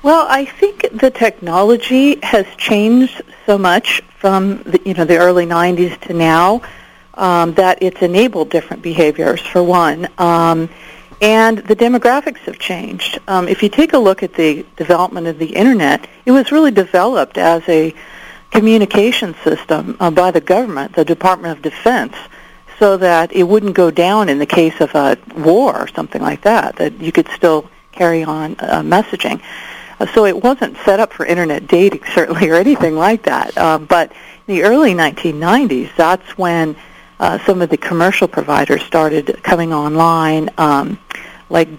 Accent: American